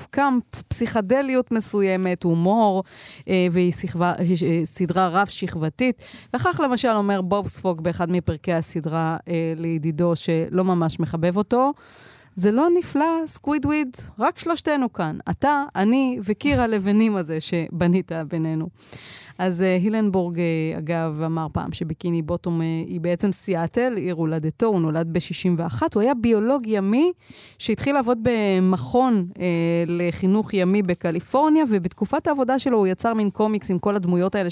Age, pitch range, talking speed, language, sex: 30-49, 170-220 Hz, 125 wpm, Hebrew, female